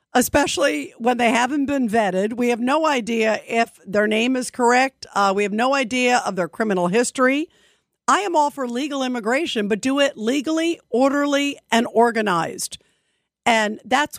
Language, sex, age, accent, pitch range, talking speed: English, female, 50-69, American, 220-285 Hz, 165 wpm